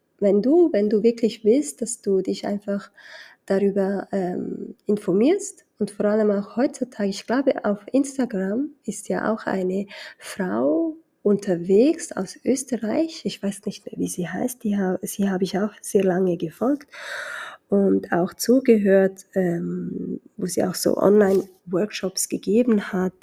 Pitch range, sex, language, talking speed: 190-230 Hz, female, German, 145 wpm